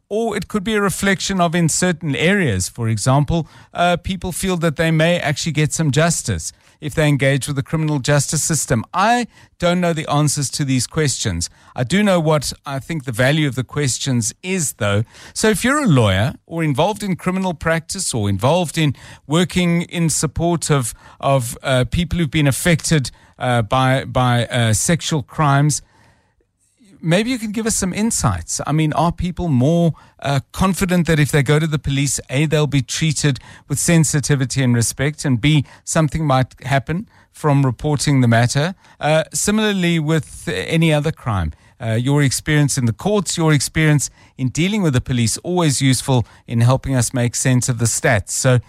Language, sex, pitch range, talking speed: English, male, 125-170 Hz, 180 wpm